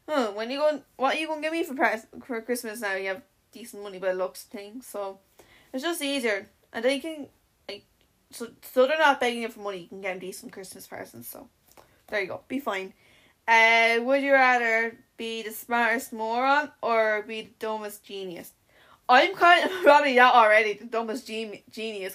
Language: English